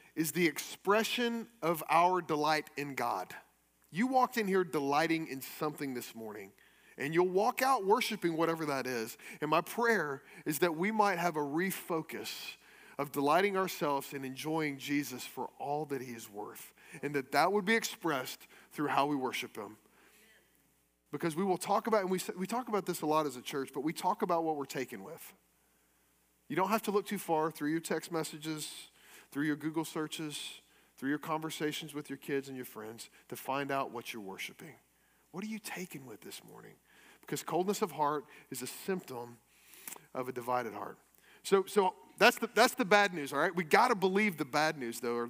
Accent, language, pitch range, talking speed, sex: American, English, 140-205 Hz, 195 wpm, male